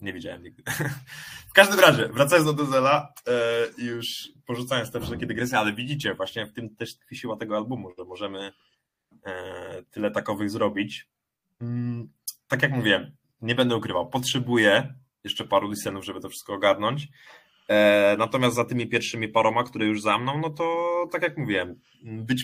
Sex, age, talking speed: male, 20-39, 150 wpm